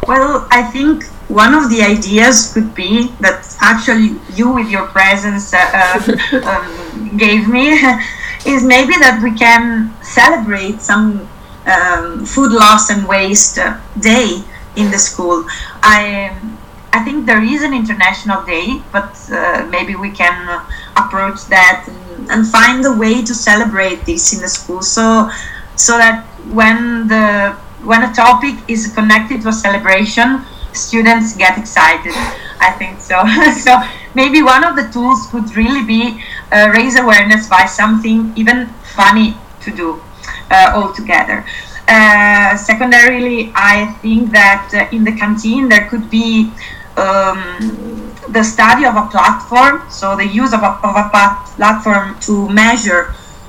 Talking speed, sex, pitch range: 140 wpm, female, 200-235 Hz